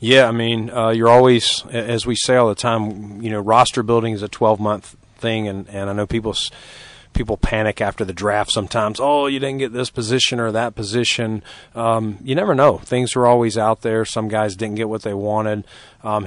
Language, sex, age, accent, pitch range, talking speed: English, male, 40-59, American, 105-120 Hz, 215 wpm